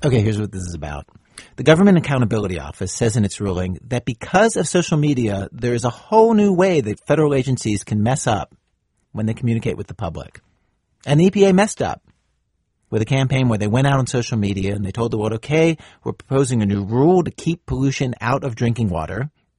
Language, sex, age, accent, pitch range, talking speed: English, male, 50-69, American, 105-145 Hz, 215 wpm